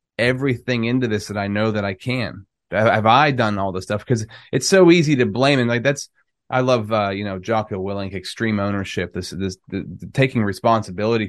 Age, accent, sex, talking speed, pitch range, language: 30-49, American, male, 200 wpm, 100-130 Hz, English